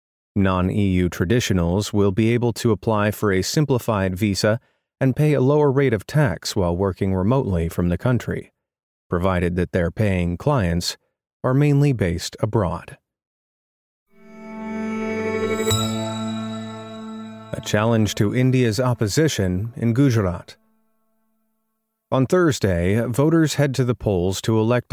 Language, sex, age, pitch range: English, male, 30-49, 90-125 Hz